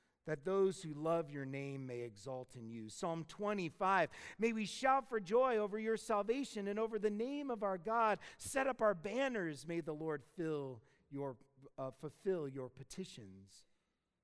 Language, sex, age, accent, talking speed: English, male, 40-59, American, 170 wpm